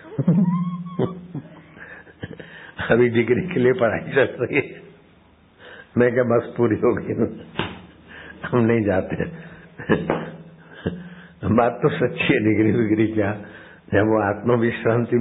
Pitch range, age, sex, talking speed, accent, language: 90-120 Hz, 60-79, male, 110 wpm, native, Hindi